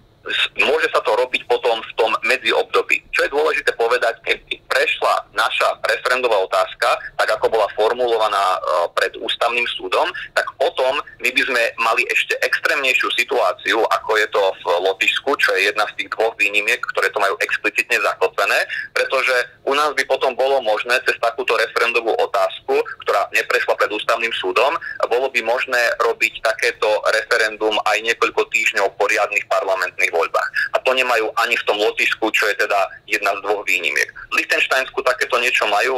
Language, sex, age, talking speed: Slovak, male, 30-49, 160 wpm